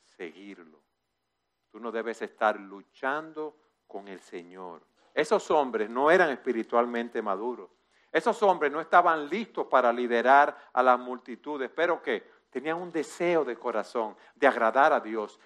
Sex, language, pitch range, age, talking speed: male, Spanish, 110-185 Hz, 50-69, 140 wpm